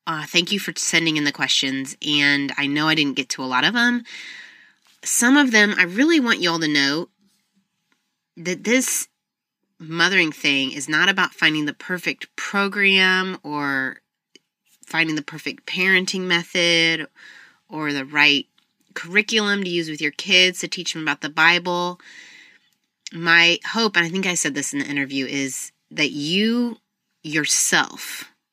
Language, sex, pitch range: English, female, 145-185 Hz